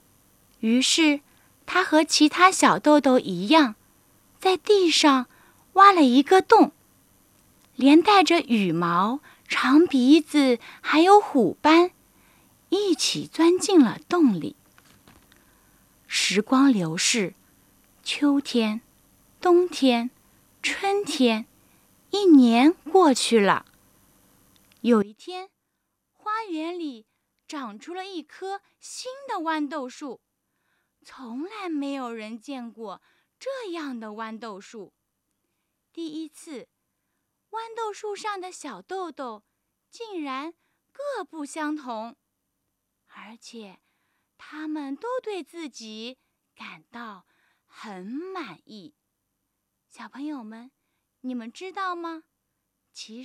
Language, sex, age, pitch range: Chinese, female, 20-39, 240-355 Hz